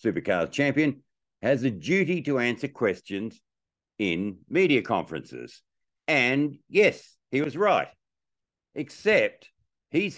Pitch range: 95-140 Hz